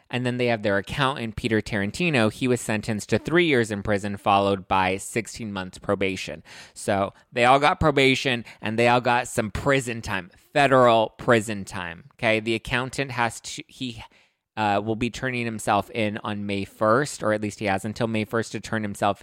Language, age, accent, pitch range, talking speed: English, 20-39, American, 100-125 Hz, 195 wpm